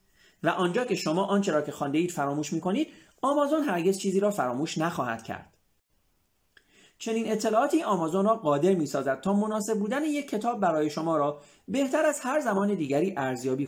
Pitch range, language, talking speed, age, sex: 140-220 Hz, Persian, 175 wpm, 40-59, male